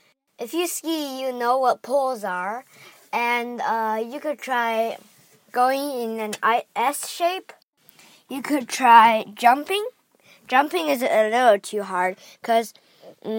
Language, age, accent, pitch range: Chinese, 20-39, American, 215-290 Hz